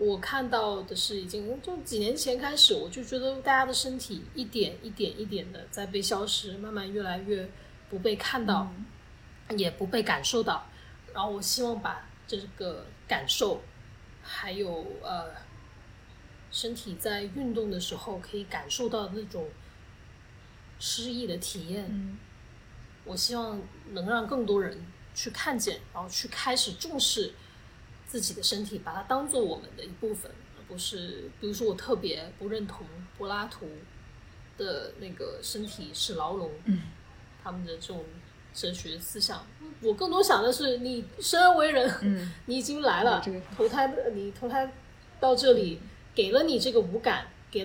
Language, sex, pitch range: Chinese, female, 190-250 Hz